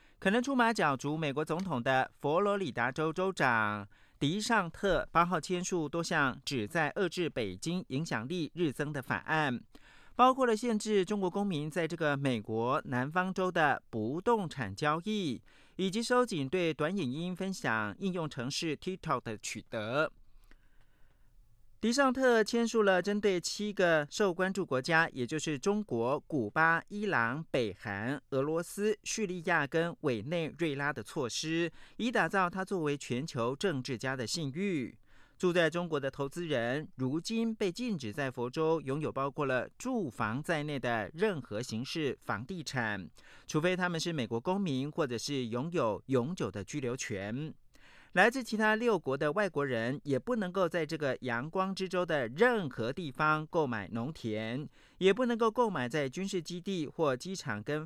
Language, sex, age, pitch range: Japanese, male, 40-59, 130-190 Hz